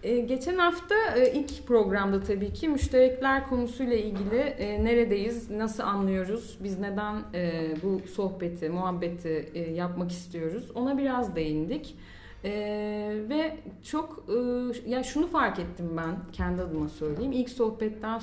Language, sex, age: Turkish, female, 30-49